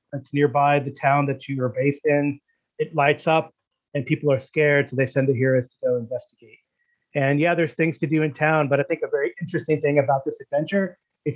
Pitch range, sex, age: 135-160 Hz, male, 30-49